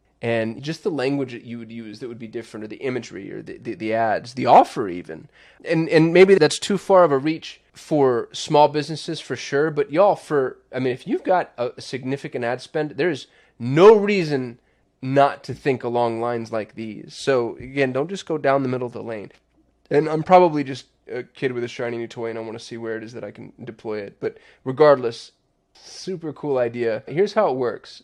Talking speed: 220 wpm